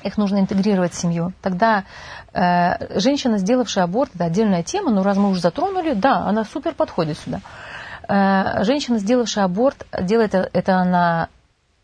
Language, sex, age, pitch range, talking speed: Russian, female, 30-49, 185-230 Hz, 155 wpm